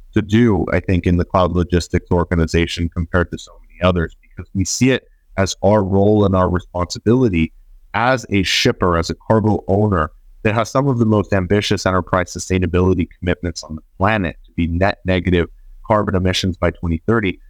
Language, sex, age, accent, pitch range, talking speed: English, male, 30-49, American, 90-105 Hz, 180 wpm